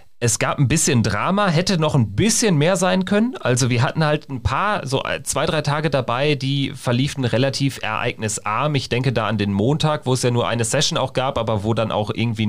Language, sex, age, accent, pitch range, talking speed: German, male, 30-49, German, 105-140 Hz, 220 wpm